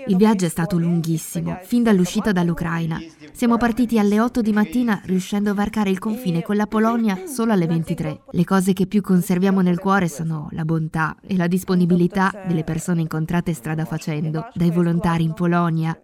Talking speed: 175 wpm